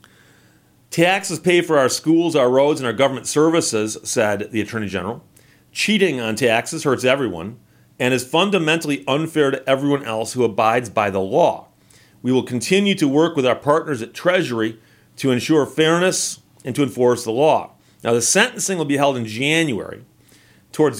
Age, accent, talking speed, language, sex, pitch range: 40-59, American, 170 wpm, English, male, 110-155 Hz